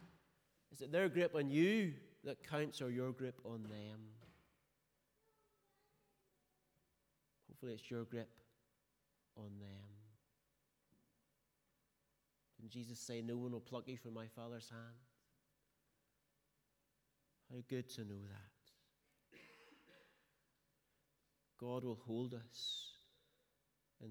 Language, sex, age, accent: English, male, 30-49, British